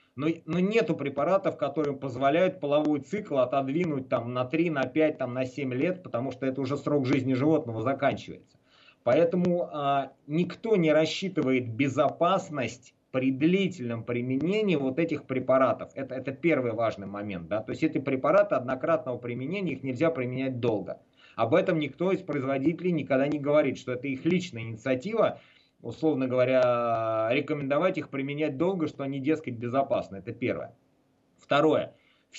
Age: 30-49